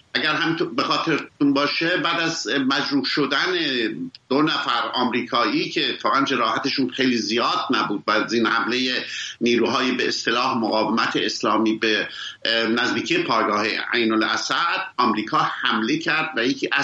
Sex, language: male, English